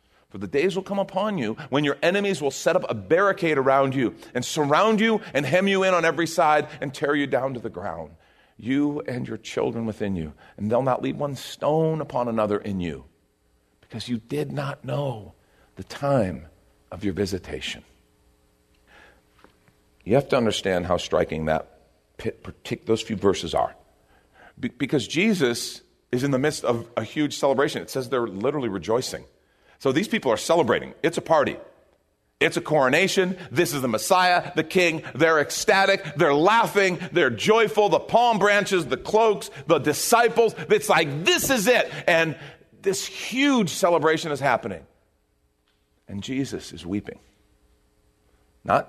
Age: 40-59